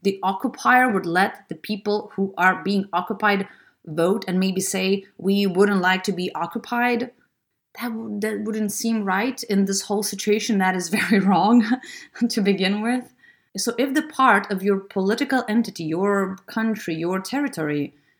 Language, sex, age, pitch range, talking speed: English, female, 30-49, 195-235 Hz, 160 wpm